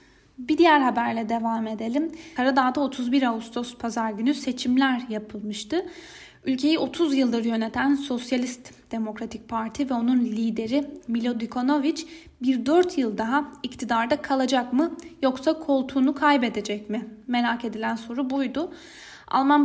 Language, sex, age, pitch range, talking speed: Turkish, female, 10-29, 230-290 Hz, 120 wpm